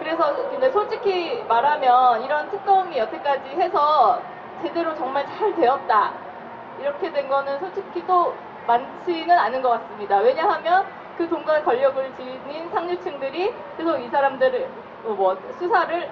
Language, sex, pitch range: Korean, female, 245-365 Hz